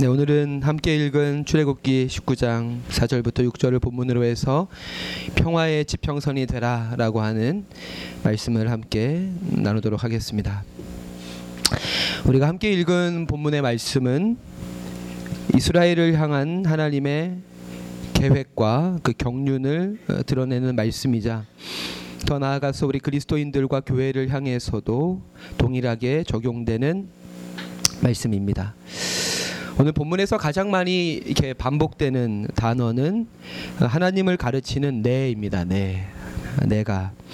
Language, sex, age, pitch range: Korean, male, 30-49, 110-150 Hz